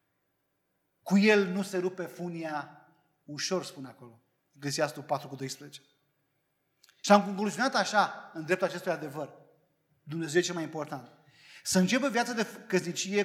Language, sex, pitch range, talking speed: Romanian, male, 150-205 Hz, 135 wpm